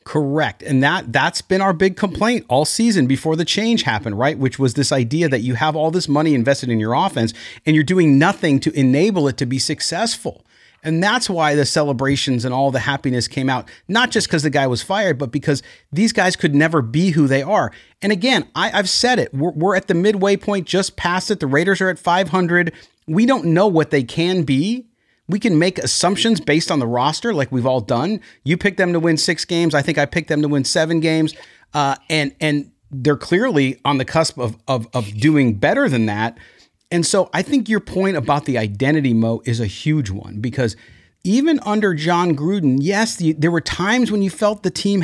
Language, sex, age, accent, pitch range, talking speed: English, male, 30-49, American, 135-185 Hz, 220 wpm